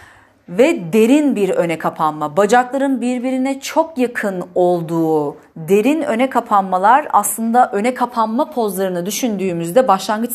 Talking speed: 110 wpm